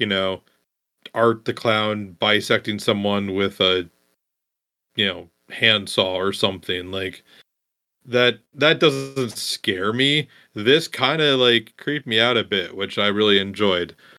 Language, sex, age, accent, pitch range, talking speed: English, male, 30-49, American, 110-155 Hz, 140 wpm